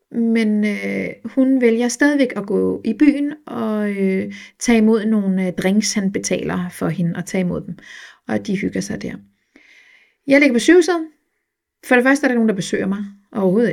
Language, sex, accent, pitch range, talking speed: Danish, female, native, 195-275 Hz, 190 wpm